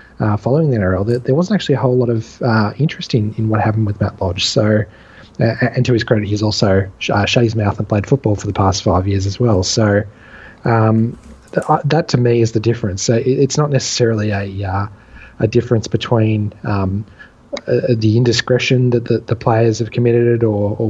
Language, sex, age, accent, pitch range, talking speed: English, male, 20-39, Australian, 110-125 Hz, 220 wpm